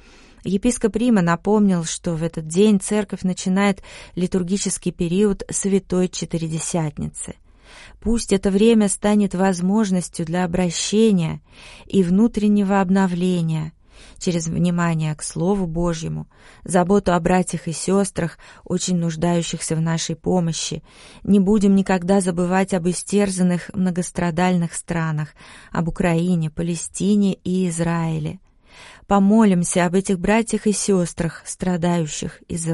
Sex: female